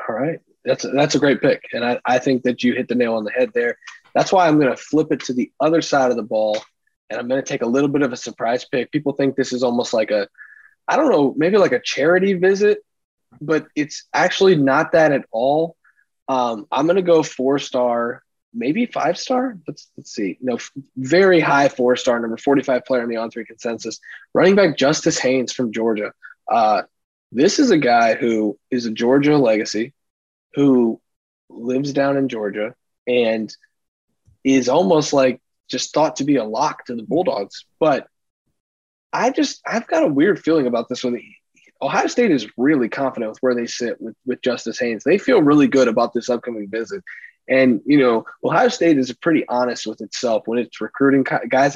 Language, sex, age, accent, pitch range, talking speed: English, male, 20-39, American, 120-155 Hz, 205 wpm